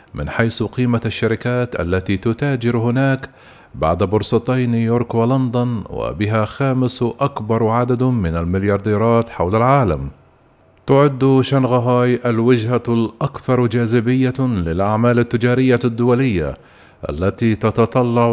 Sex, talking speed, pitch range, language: male, 95 wpm, 110-125 Hz, Arabic